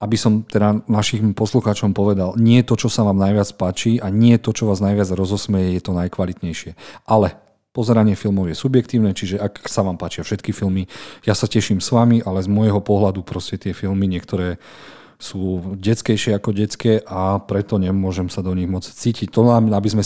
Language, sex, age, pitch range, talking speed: Slovak, male, 40-59, 100-115 Hz, 190 wpm